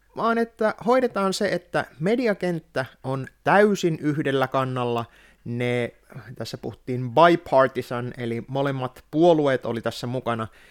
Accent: native